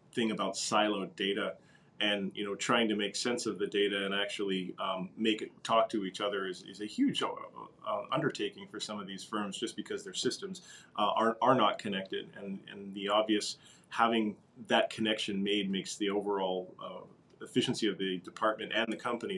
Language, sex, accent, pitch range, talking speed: English, male, American, 100-115 Hz, 190 wpm